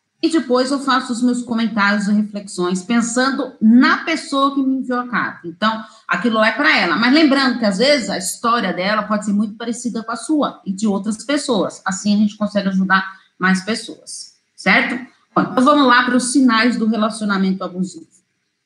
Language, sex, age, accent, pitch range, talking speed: Portuguese, female, 40-59, Brazilian, 205-275 Hz, 190 wpm